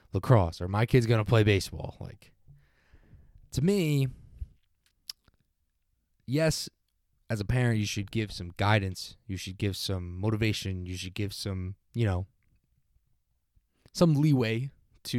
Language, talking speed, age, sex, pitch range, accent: English, 135 wpm, 20-39, male, 95-120 Hz, American